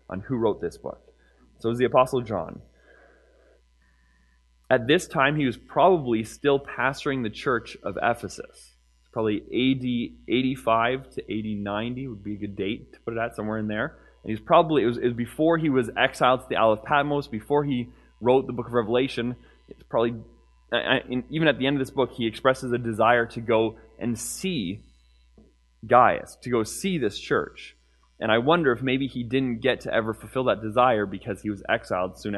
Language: English